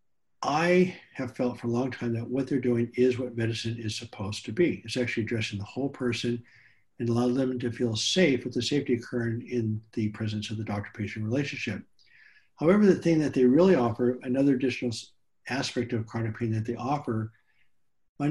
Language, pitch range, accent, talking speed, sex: English, 115-135 Hz, American, 190 wpm, male